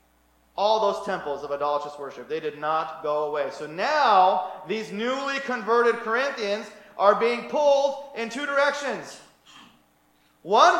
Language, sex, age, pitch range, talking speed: English, male, 30-49, 190-255 Hz, 135 wpm